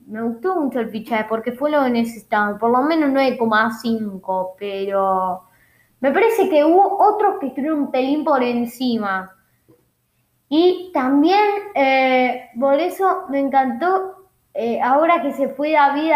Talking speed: 145 wpm